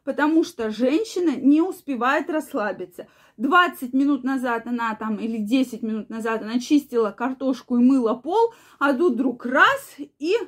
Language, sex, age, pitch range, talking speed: Russian, female, 20-39, 235-295 Hz, 150 wpm